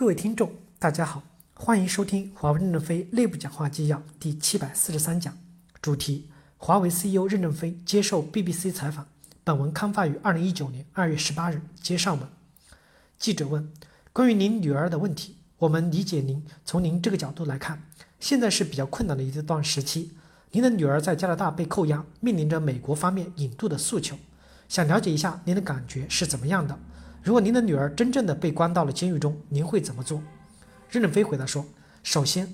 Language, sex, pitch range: Chinese, male, 150-195 Hz